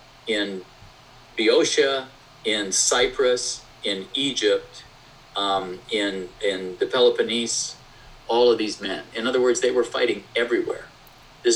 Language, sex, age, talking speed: English, male, 50-69, 120 wpm